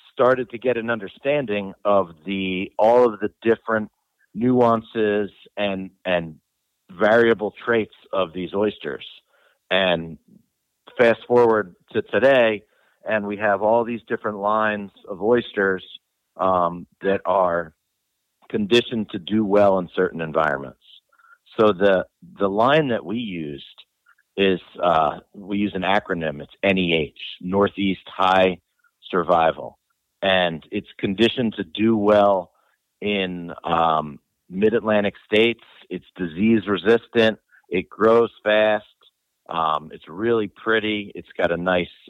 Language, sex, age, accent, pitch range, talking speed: English, male, 50-69, American, 95-110 Hz, 120 wpm